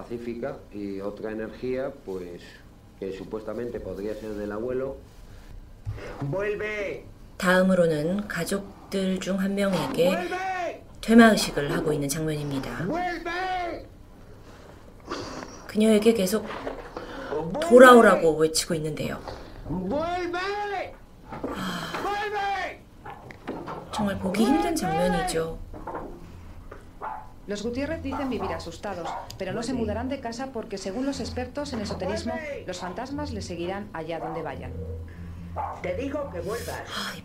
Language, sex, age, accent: Korean, female, 40-59, Spanish